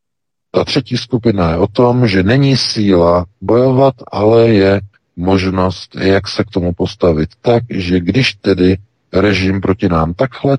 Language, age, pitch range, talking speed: Czech, 50-69, 90-120 Hz, 145 wpm